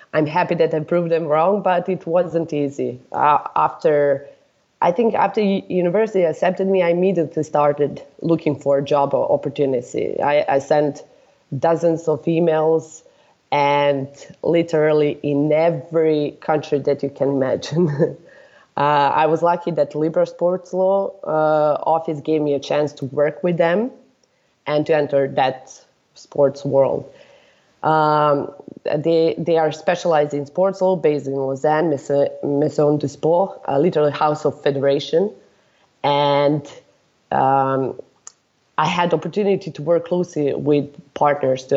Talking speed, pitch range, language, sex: 140 wpm, 140-170 Hz, English, female